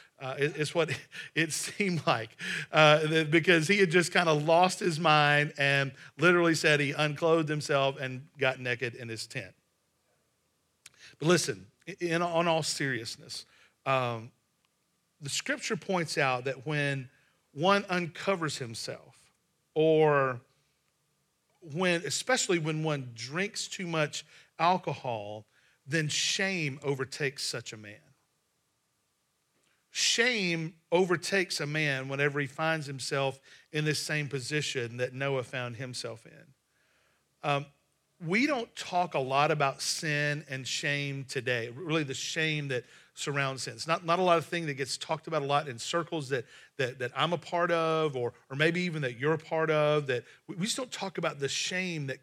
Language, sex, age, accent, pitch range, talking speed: English, male, 40-59, American, 135-170 Hz, 150 wpm